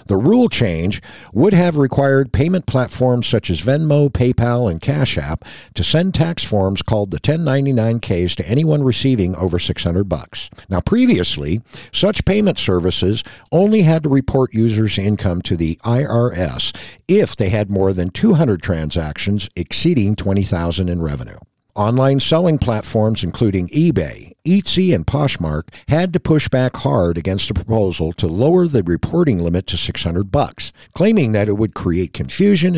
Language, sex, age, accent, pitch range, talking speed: English, male, 60-79, American, 90-135 Hz, 150 wpm